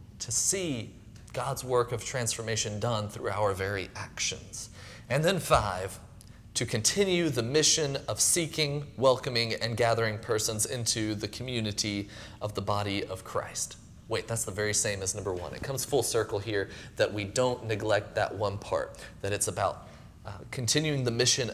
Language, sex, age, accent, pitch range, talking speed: English, male, 30-49, American, 110-145 Hz, 165 wpm